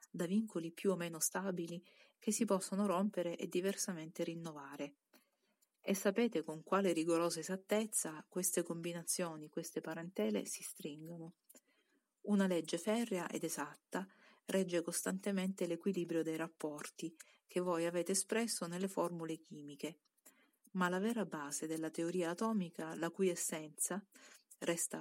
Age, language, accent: 40-59, Italian, native